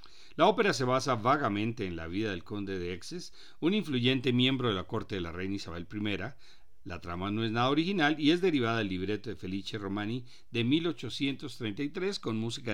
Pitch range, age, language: 100-145 Hz, 50-69, Spanish